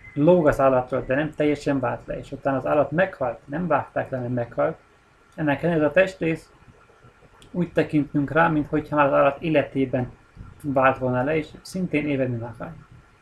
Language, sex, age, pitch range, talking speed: Hungarian, male, 30-49, 125-155 Hz, 160 wpm